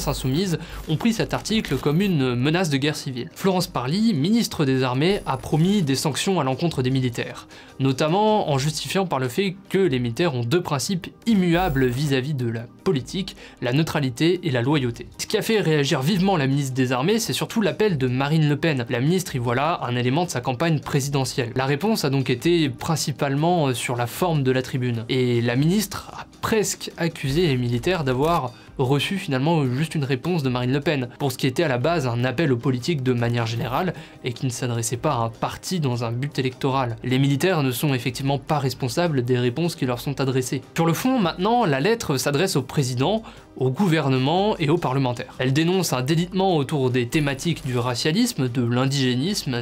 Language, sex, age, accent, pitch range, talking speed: French, male, 20-39, French, 130-170 Hz, 200 wpm